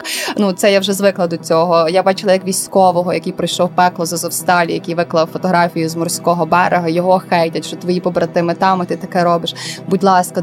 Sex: female